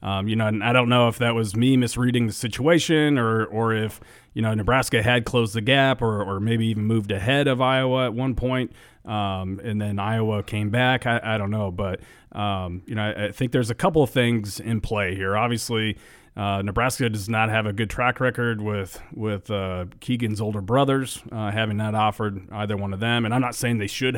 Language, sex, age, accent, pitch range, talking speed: English, male, 40-59, American, 100-120 Hz, 225 wpm